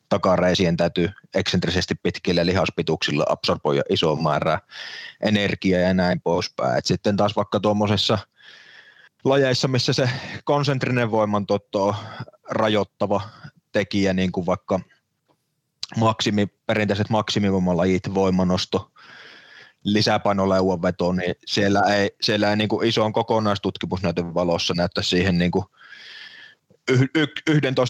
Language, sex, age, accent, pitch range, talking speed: Finnish, male, 30-49, native, 95-115 Hz, 100 wpm